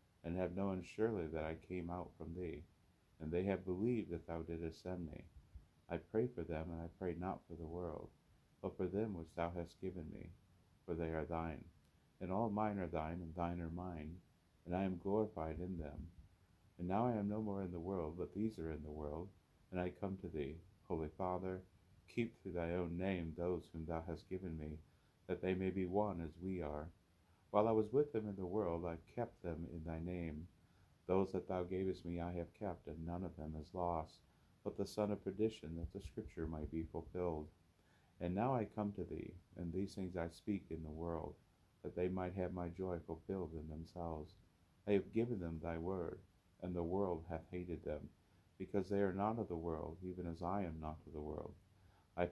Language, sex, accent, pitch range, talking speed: English, male, American, 85-95 Hz, 215 wpm